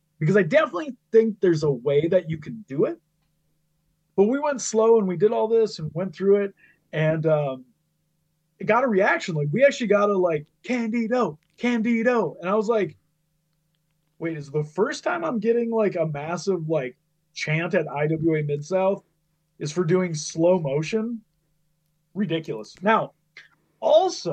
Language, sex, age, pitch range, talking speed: English, male, 30-49, 155-205 Hz, 165 wpm